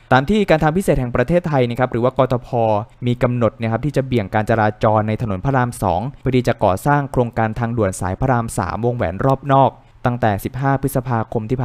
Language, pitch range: Thai, 105-130 Hz